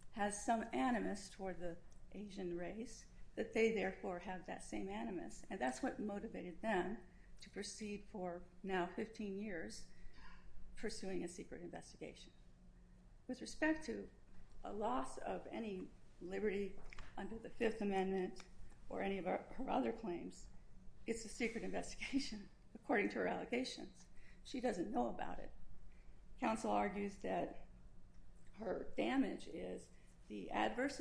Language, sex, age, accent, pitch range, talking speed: English, female, 50-69, American, 185-235 Hz, 130 wpm